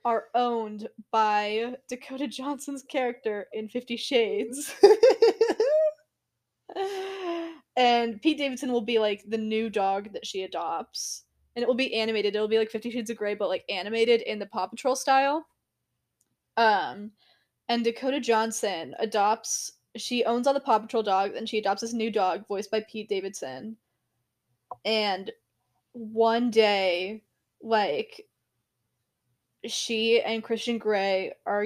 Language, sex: English, female